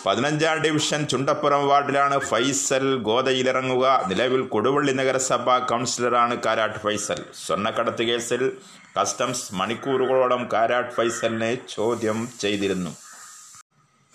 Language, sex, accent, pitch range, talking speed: Malayalam, male, native, 115-140 Hz, 85 wpm